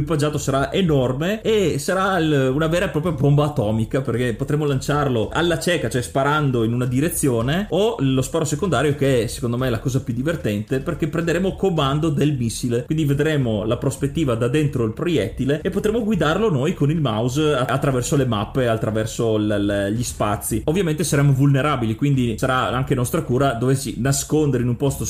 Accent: native